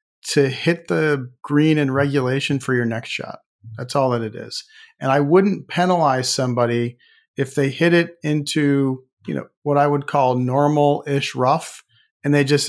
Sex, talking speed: male, 170 wpm